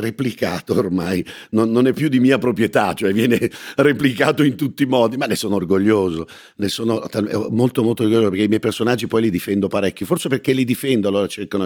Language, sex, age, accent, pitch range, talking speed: Italian, male, 50-69, native, 100-135 Hz, 200 wpm